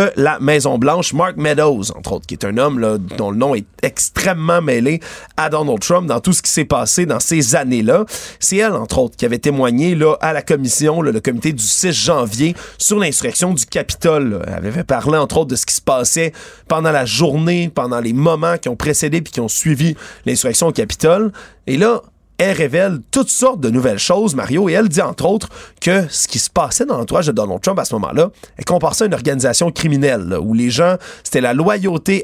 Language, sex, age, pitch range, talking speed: French, male, 30-49, 140-180 Hz, 215 wpm